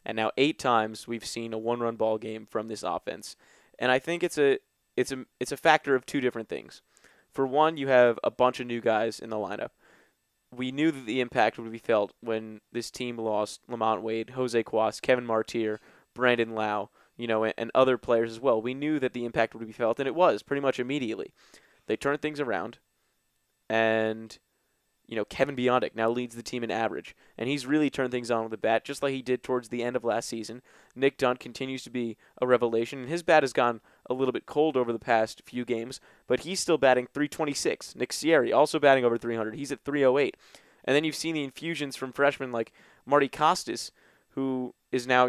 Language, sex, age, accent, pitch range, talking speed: English, male, 20-39, American, 115-135 Hz, 225 wpm